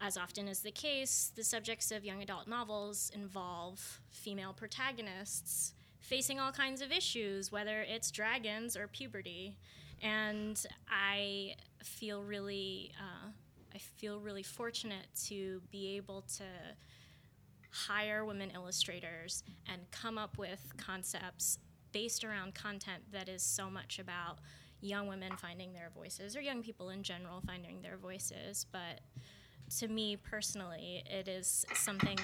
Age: 20-39